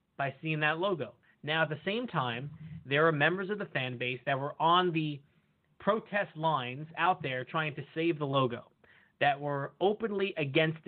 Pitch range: 125-165 Hz